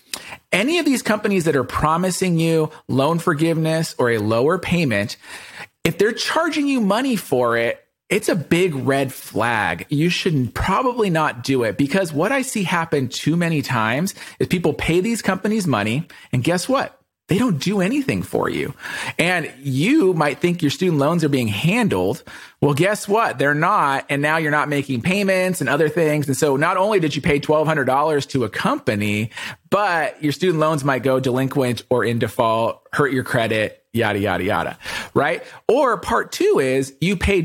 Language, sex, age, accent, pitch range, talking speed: English, male, 40-59, American, 130-180 Hz, 180 wpm